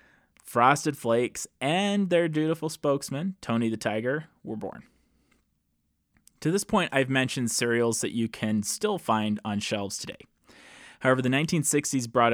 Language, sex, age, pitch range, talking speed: English, male, 20-39, 105-145 Hz, 140 wpm